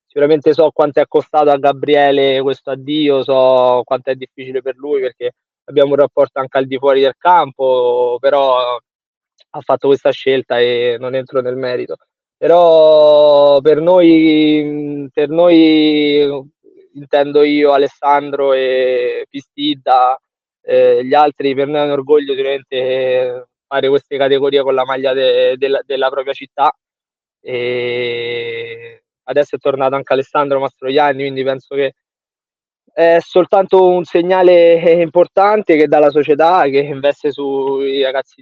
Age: 20-39